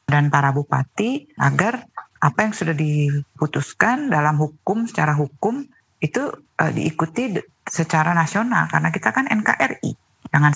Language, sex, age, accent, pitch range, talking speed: Indonesian, female, 50-69, native, 145-195 Hz, 120 wpm